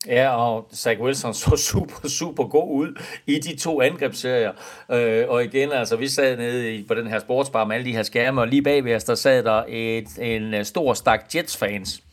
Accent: native